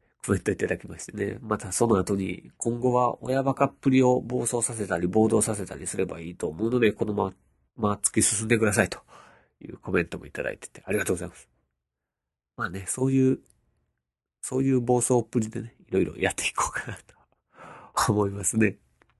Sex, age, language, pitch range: male, 40-59, Japanese, 95-125 Hz